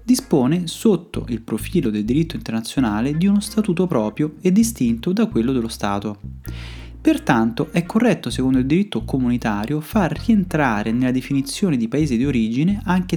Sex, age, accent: male, 20-39, native